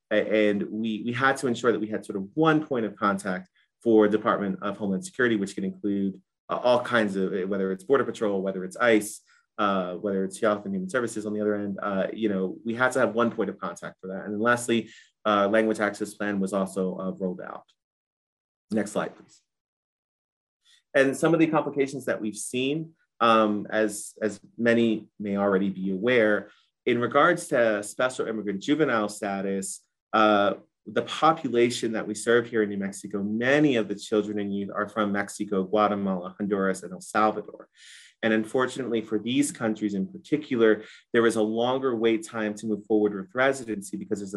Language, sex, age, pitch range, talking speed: English, male, 30-49, 100-115 Hz, 190 wpm